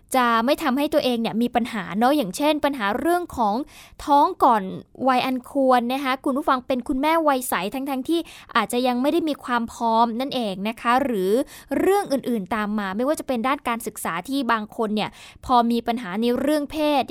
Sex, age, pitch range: female, 10-29, 230-290 Hz